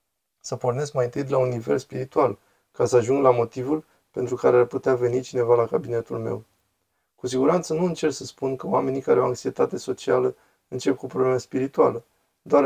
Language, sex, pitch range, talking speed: Romanian, male, 125-165 Hz, 185 wpm